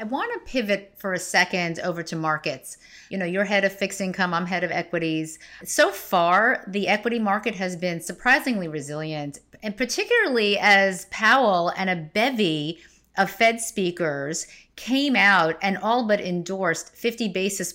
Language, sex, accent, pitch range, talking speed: English, female, American, 175-220 Hz, 160 wpm